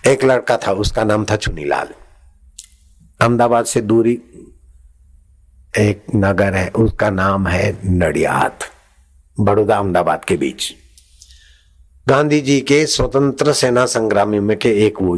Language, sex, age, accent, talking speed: Hindi, male, 60-79, native, 120 wpm